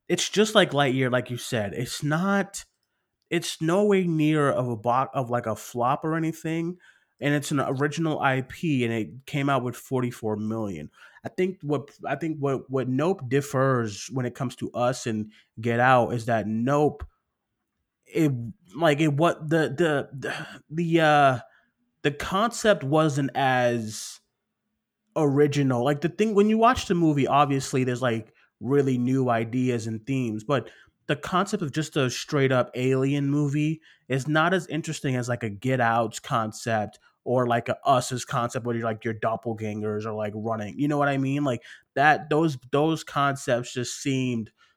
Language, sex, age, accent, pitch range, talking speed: English, male, 20-39, American, 120-150 Hz, 175 wpm